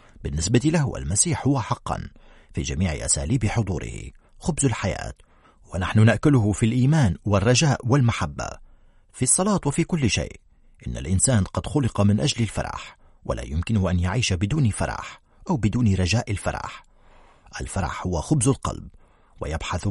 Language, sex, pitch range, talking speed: Arabic, male, 90-125 Hz, 135 wpm